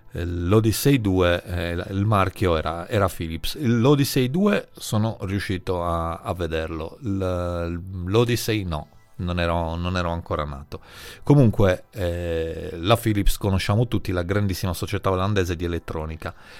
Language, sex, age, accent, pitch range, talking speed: Italian, male, 40-59, native, 95-130 Hz, 125 wpm